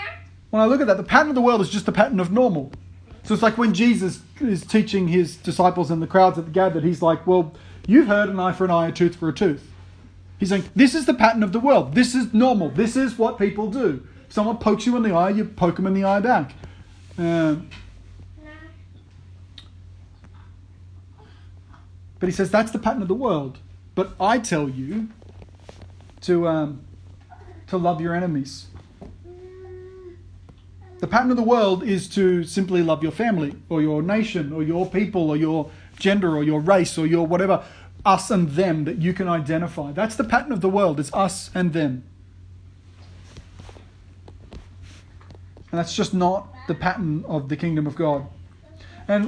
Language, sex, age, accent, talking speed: English, male, 40-59, Australian, 185 wpm